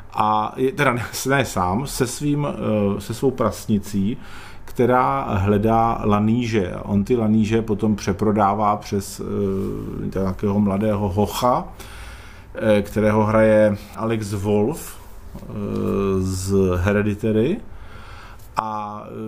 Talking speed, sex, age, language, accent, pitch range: 90 wpm, male, 40-59, Czech, native, 105-120 Hz